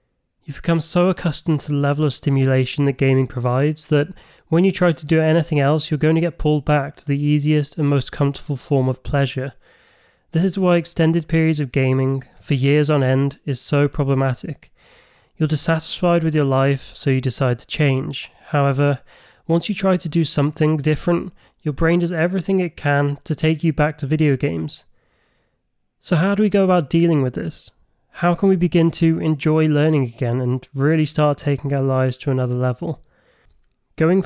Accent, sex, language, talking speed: British, male, English, 185 wpm